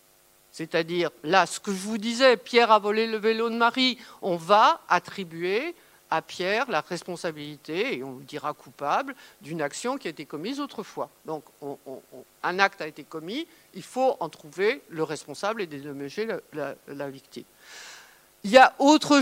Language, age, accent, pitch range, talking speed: French, 50-69, French, 160-240 Hz, 180 wpm